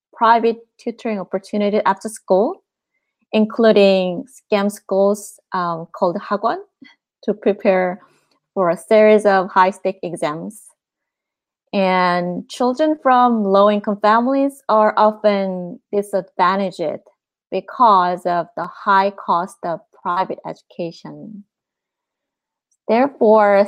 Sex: female